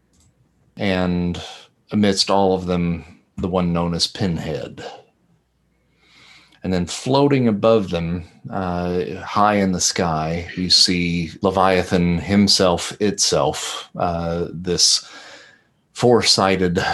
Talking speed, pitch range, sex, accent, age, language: 100 wpm, 85-95 Hz, male, American, 40-59, English